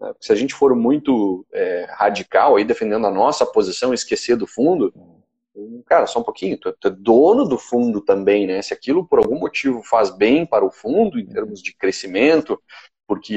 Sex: male